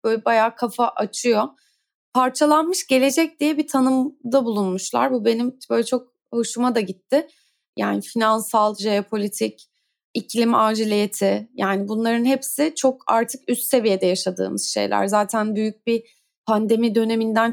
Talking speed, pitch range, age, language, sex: 125 wpm, 215-270 Hz, 30-49, Turkish, female